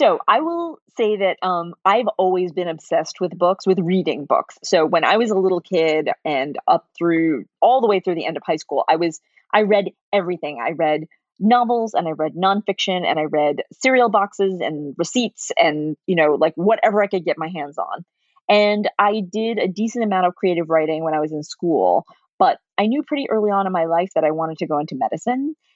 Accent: American